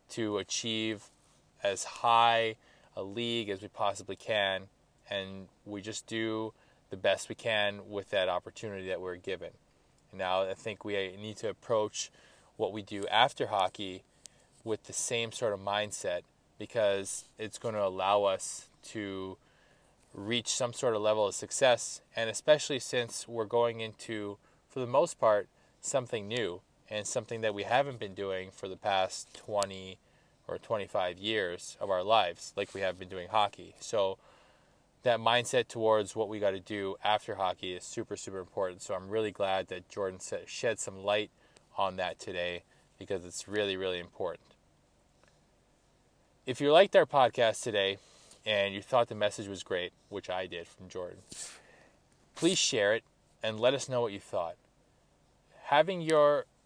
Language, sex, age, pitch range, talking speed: English, male, 20-39, 95-115 Hz, 160 wpm